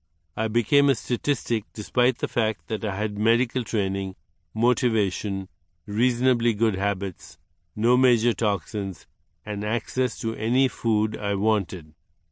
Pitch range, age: 95-120 Hz, 50-69